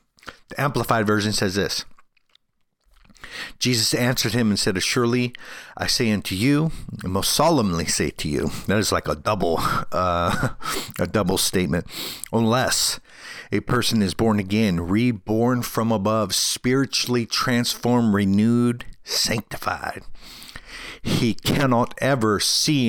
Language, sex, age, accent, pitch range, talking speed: English, male, 50-69, American, 100-120 Hz, 125 wpm